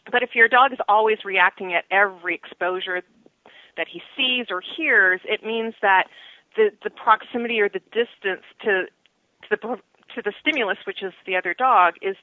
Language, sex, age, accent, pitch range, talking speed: English, female, 40-59, American, 190-240 Hz, 175 wpm